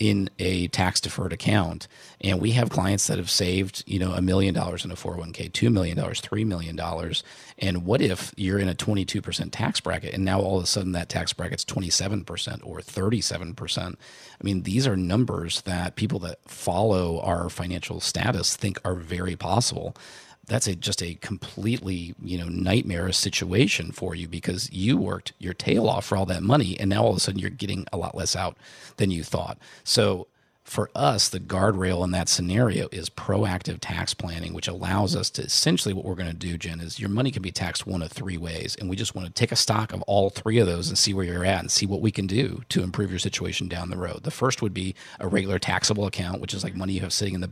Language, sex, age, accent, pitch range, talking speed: English, male, 40-59, American, 90-105 Hz, 225 wpm